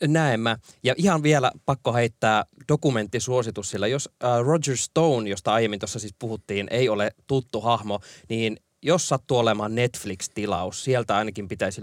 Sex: male